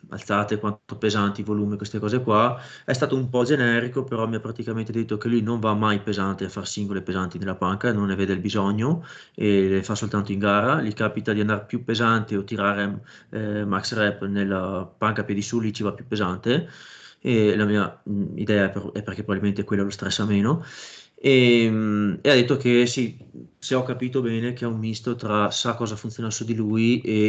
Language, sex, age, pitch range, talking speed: Italian, male, 30-49, 100-120 Hz, 205 wpm